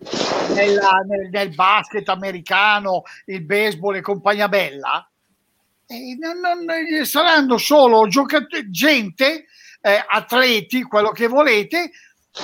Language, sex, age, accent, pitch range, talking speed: Italian, male, 50-69, native, 210-290 Hz, 105 wpm